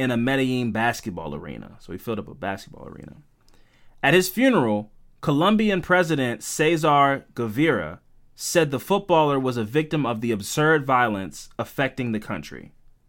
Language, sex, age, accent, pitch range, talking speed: English, male, 20-39, American, 120-160 Hz, 145 wpm